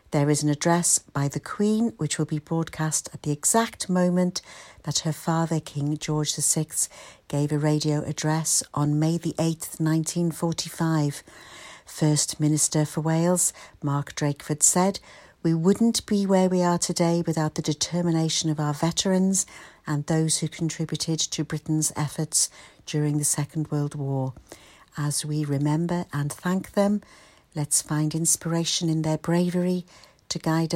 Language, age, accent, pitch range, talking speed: English, 60-79, British, 145-170 Hz, 150 wpm